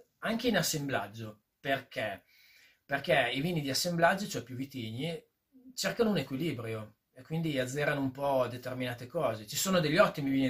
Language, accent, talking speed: Italian, native, 155 wpm